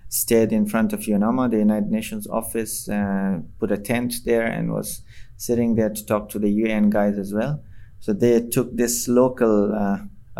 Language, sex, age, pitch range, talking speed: English, male, 20-39, 105-120 Hz, 185 wpm